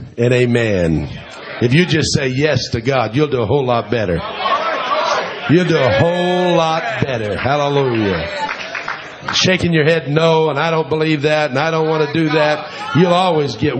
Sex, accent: male, American